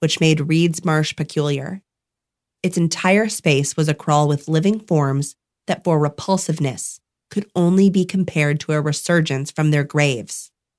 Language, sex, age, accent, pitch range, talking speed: English, female, 30-49, American, 150-190 Hz, 150 wpm